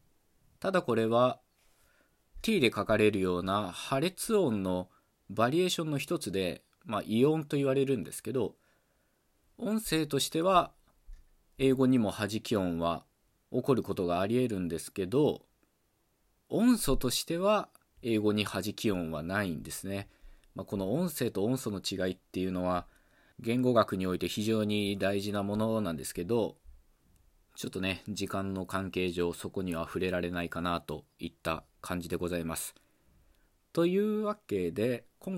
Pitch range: 90-130 Hz